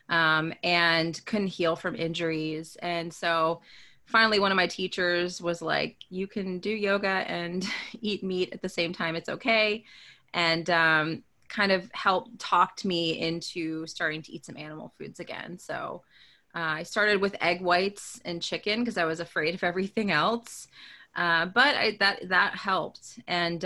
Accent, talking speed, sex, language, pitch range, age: American, 170 wpm, female, English, 165-190 Hz, 20-39